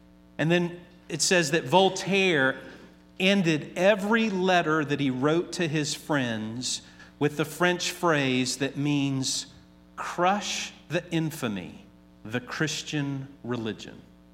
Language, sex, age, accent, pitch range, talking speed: English, male, 50-69, American, 120-170 Hz, 115 wpm